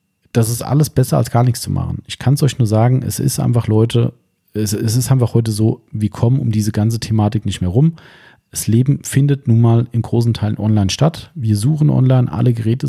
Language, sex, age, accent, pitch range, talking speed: German, male, 40-59, German, 110-135 Hz, 225 wpm